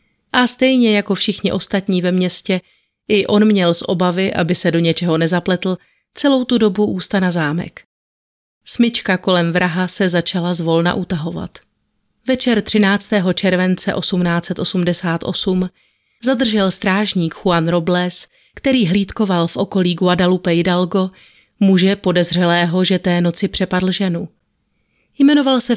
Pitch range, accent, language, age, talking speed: 175-205 Hz, native, Czech, 30-49, 125 wpm